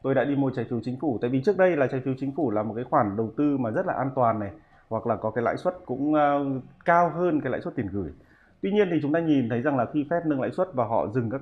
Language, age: Vietnamese, 20-39